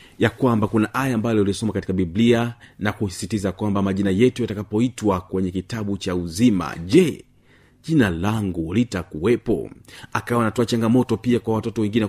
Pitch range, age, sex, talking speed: 105-125 Hz, 40-59, male, 145 wpm